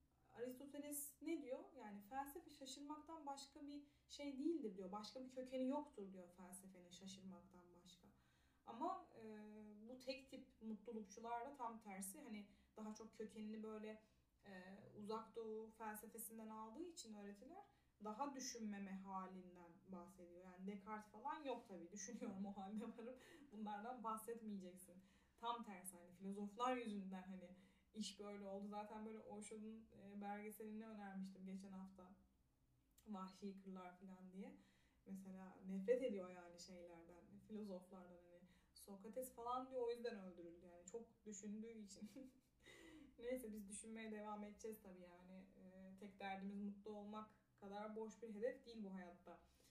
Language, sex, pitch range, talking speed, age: Turkish, female, 190-240 Hz, 135 wpm, 10-29